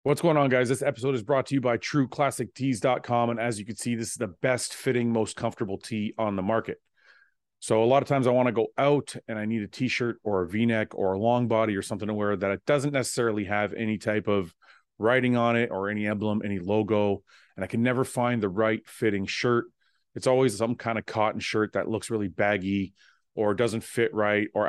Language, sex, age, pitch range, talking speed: English, male, 30-49, 105-125 Hz, 230 wpm